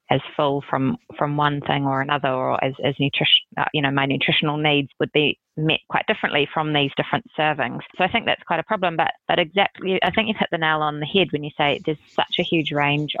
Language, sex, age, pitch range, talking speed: English, female, 20-39, 145-170 Hz, 245 wpm